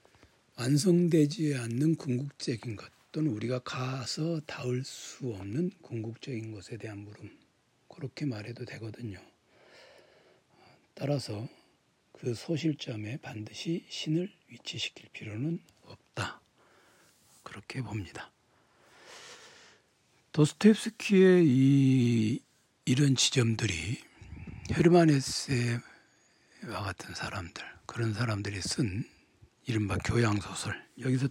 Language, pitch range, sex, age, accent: Korean, 110-145 Hz, male, 60-79, native